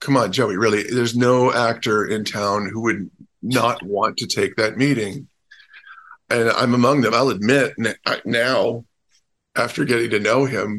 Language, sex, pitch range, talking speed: English, male, 115-140 Hz, 160 wpm